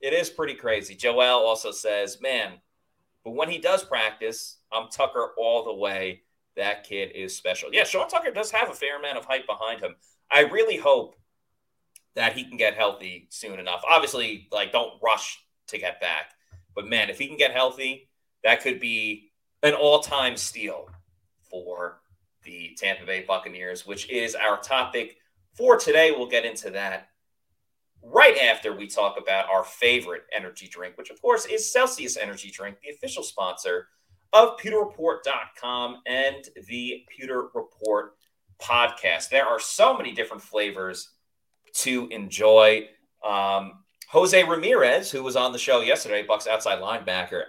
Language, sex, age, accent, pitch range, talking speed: English, male, 30-49, American, 95-145 Hz, 160 wpm